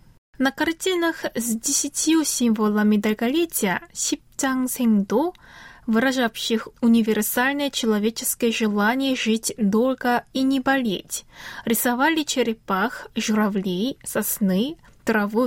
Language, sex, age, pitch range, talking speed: Russian, female, 20-39, 215-275 Hz, 80 wpm